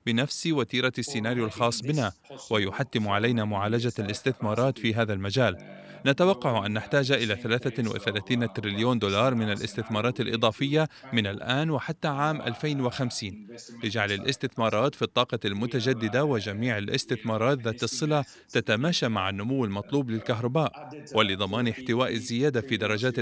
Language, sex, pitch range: Arabic, male, 110-135 Hz